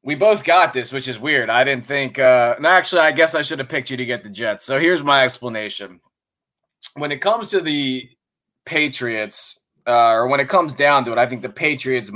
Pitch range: 125-155 Hz